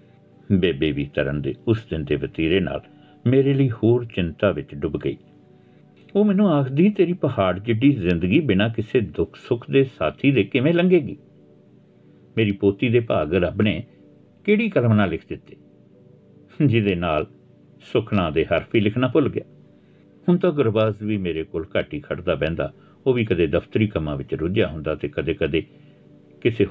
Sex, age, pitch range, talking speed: male, 60-79, 90-140 Hz, 155 wpm